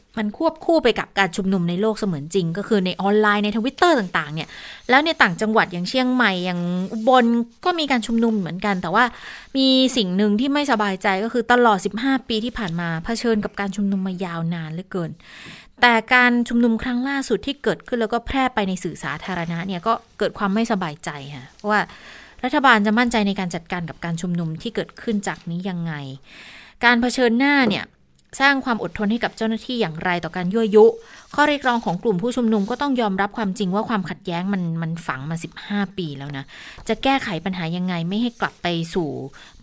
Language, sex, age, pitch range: Thai, female, 20-39, 180-240 Hz